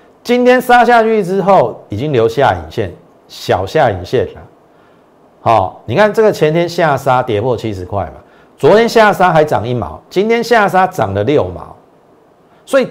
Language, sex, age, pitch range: Chinese, male, 50-69, 95-140 Hz